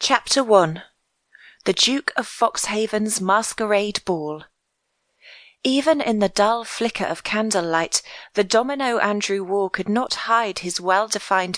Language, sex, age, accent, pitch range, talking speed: English, female, 30-49, British, 190-235 Hz, 125 wpm